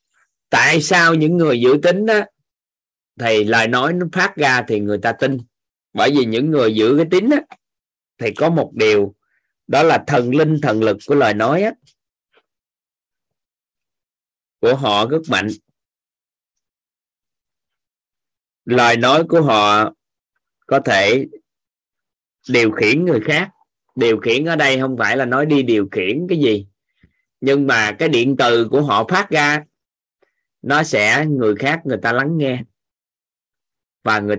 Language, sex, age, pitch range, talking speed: Vietnamese, male, 20-39, 115-155 Hz, 145 wpm